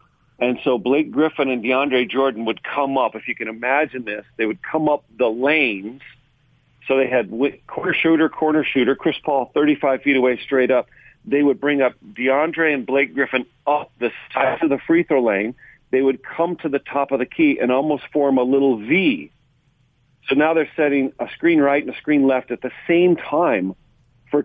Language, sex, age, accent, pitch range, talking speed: English, male, 50-69, American, 130-150 Hz, 200 wpm